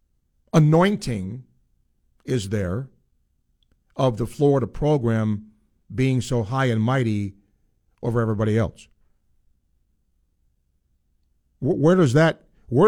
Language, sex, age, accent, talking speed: English, male, 50-69, American, 90 wpm